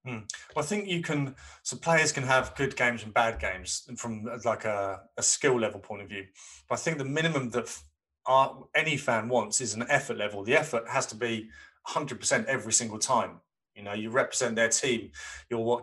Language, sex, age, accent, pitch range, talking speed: English, male, 30-49, British, 115-140 Hz, 210 wpm